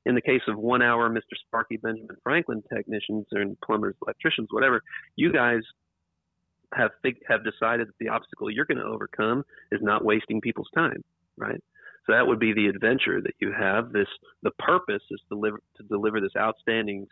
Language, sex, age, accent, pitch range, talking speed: English, male, 40-59, American, 100-115 Hz, 180 wpm